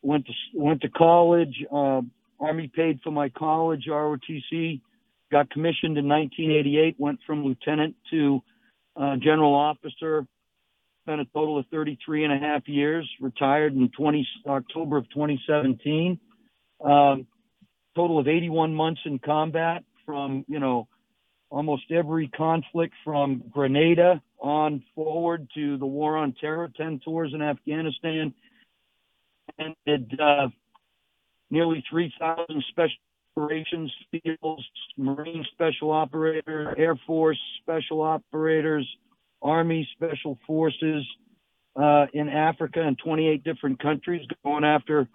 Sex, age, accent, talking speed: male, 50-69, American, 120 wpm